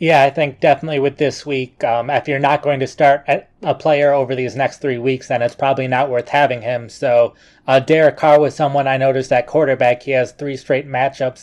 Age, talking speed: 20-39, 225 wpm